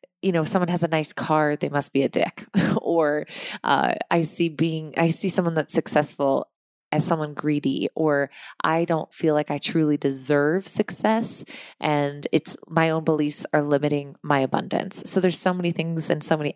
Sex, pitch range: female, 150-180 Hz